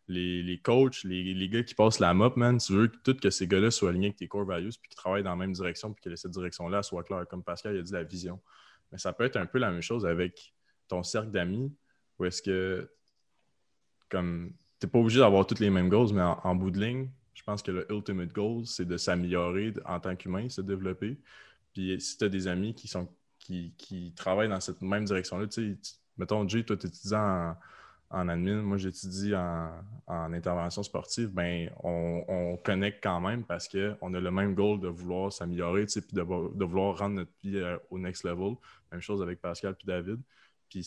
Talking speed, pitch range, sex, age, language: 225 wpm, 90-100 Hz, male, 20-39, French